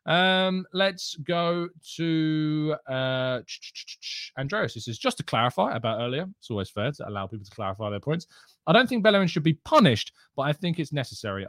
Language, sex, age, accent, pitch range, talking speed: English, male, 20-39, British, 115-170 Hz, 185 wpm